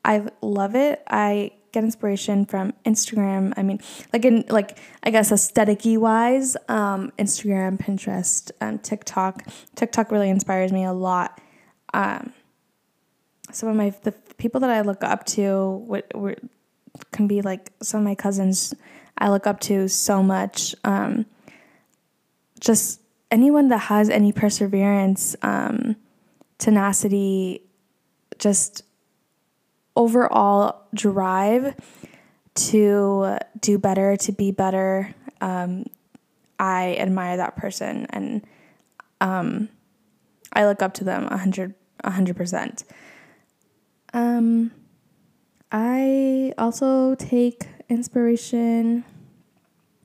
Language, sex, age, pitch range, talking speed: English, female, 10-29, 195-235 Hz, 115 wpm